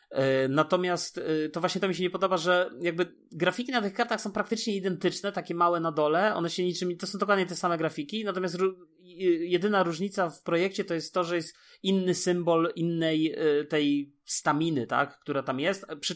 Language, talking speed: Polish, 190 wpm